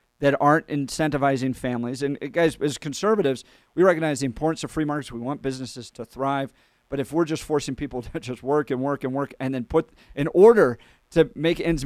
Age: 40-59